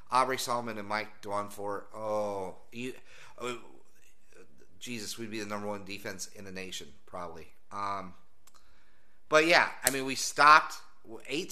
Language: English